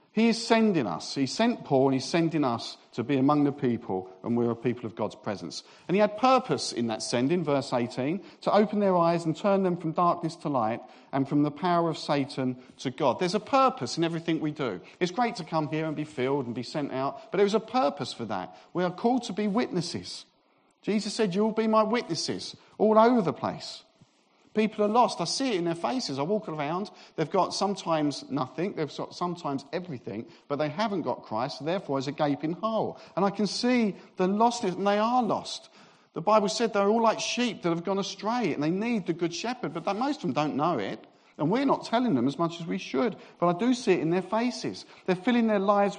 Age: 50-69